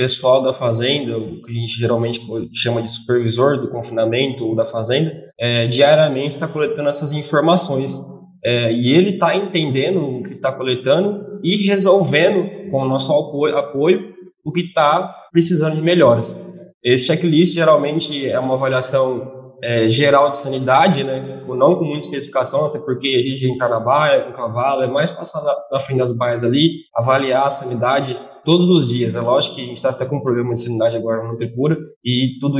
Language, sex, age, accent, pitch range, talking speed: Portuguese, male, 20-39, Brazilian, 130-155 Hz, 185 wpm